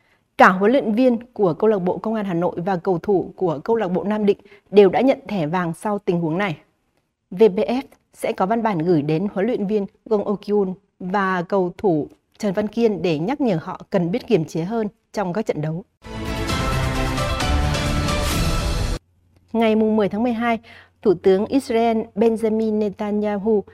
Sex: female